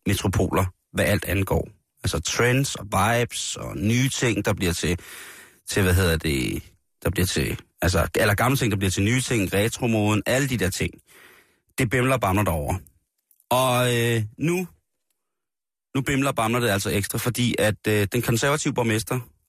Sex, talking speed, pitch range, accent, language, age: male, 170 wpm, 100-120 Hz, native, Danish, 30-49